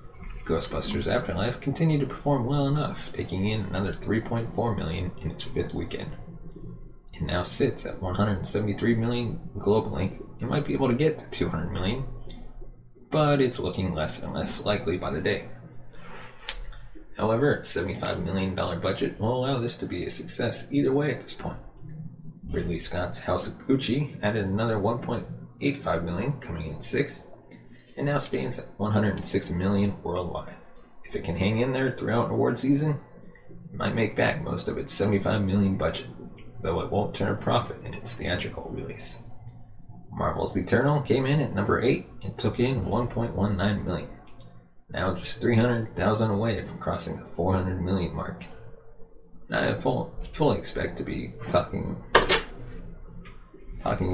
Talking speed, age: 155 wpm, 20-39